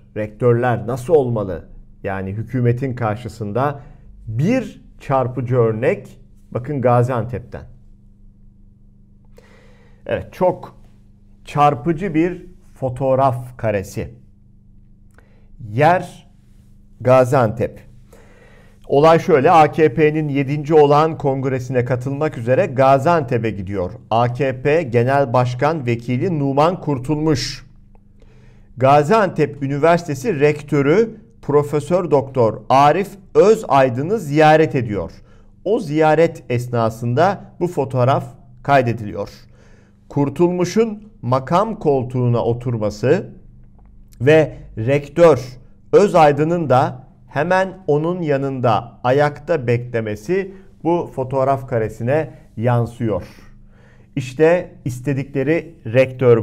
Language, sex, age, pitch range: Turkish, male, 50-69, 115-155 Hz